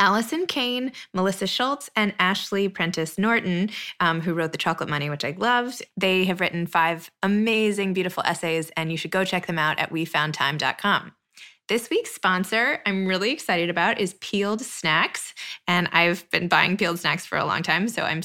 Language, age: English, 20-39